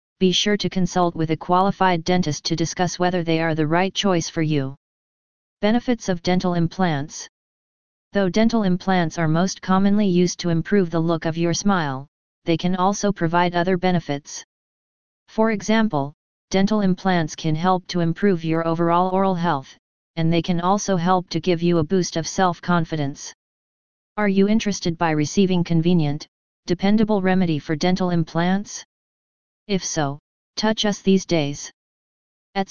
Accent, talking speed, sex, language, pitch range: American, 155 wpm, female, English, 165-195 Hz